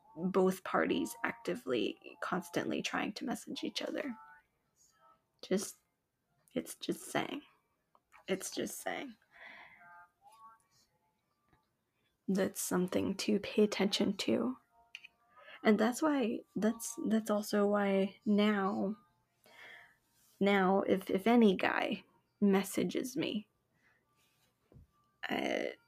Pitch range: 185-230 Hz